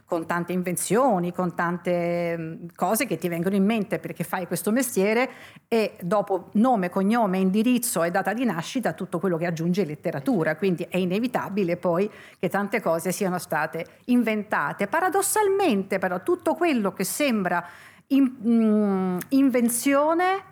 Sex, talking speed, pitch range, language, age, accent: female, 135 wpm, 180-240 Hz, Italian, 50-69, native